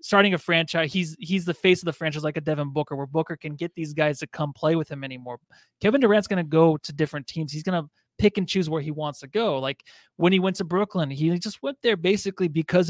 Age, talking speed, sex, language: 20-39, 255 wpm, male, English